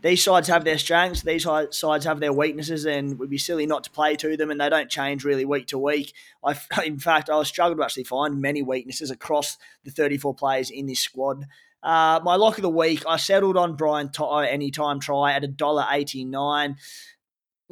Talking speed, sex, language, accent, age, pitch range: 200 wpm, male, English, Australian, 20-39, 140-165 Hz